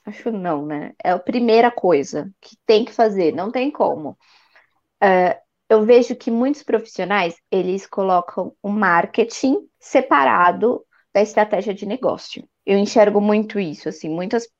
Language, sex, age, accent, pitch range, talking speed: Portuguese, female, 20-39, Brazilian, 190-245 Hz, 150 wpm